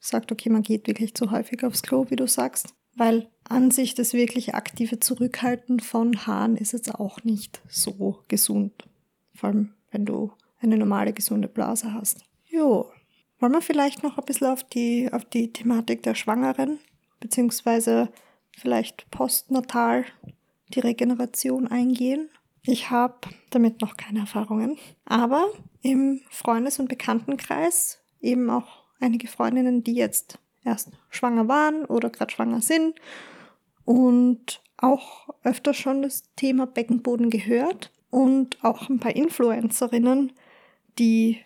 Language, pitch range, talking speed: German, 220-255 Hz, 135 wpm